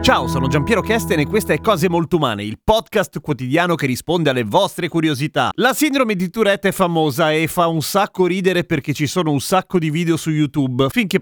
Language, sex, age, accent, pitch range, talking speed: Italian, male, 30-49, native, 135-185 Hz, 210 wpm